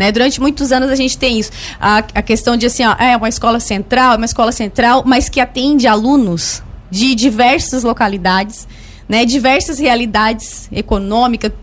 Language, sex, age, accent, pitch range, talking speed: Portuguese, female, 20-39, Brazilian, 220-265 Hz, 165 wpm